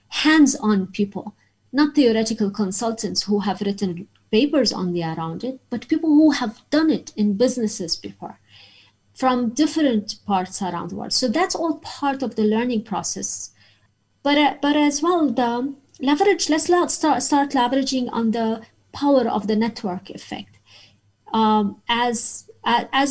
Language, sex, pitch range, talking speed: English, female, 195-250 Hz, 145 wpm